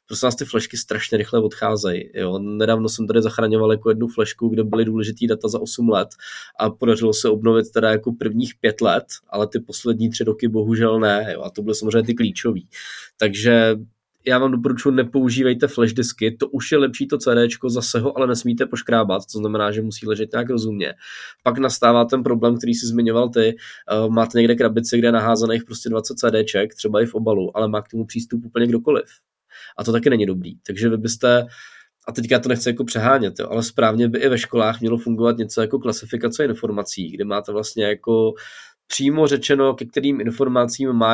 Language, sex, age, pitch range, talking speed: Czech, male, 20-39, 110-125 Hz, 195 wpm